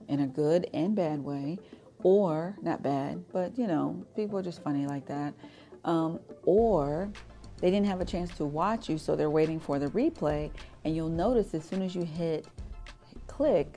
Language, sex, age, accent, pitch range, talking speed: English, female, 40-59, American, 145-180 Hz, 185 wpm